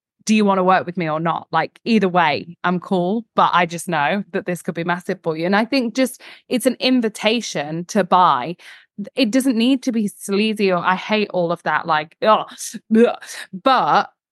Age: 20-39